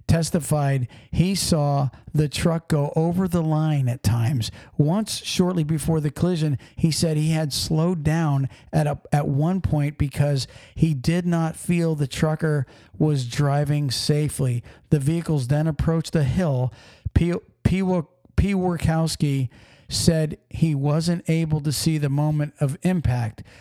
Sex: male